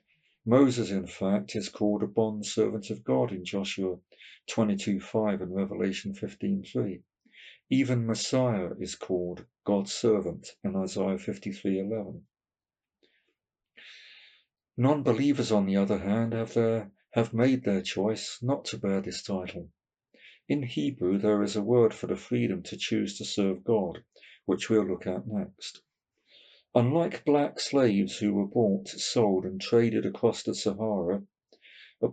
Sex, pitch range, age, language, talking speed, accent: male, 95-115 Hz, 50-69, English, 135 wpm, British